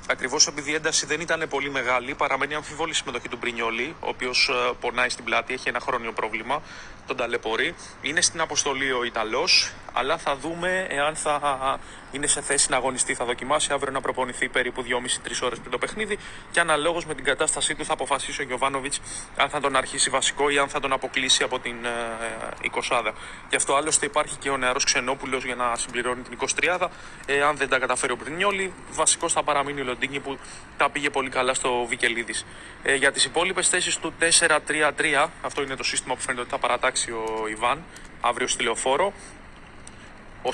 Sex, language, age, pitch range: male, Greek, 30-49, 125-155 Hz